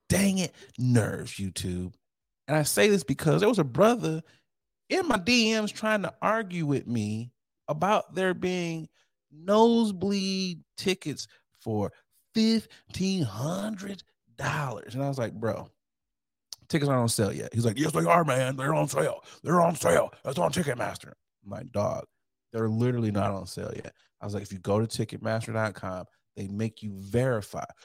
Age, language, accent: 30-49, English, American